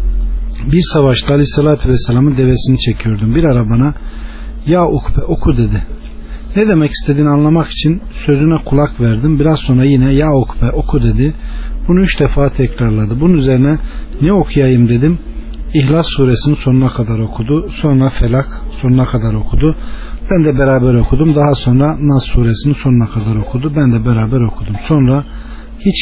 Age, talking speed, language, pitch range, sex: 40-59, 150 wpm, Turkish, 115-150 Hz, male